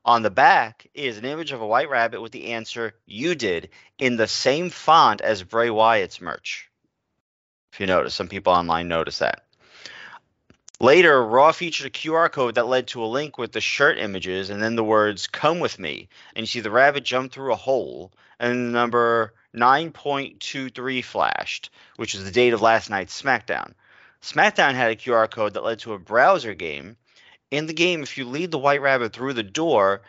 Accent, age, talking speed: American, 30-49, 195 wpm